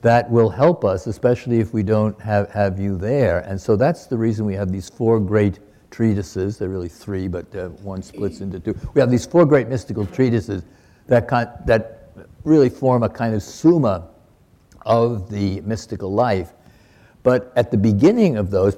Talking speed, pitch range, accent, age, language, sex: 185 wpm, 100-130 Hz, American, 60-79, English, male